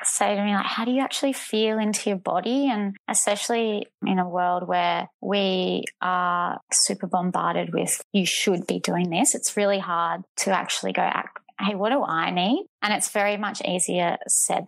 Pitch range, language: 180-210 Hz, English